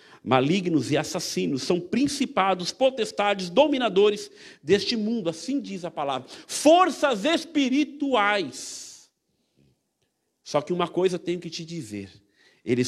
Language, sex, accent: Portuguese, male, Brazilian